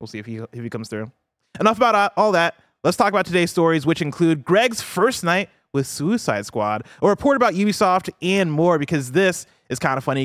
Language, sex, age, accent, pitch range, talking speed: English, male, 20-39, American, 120-170 Hz, 215 wpm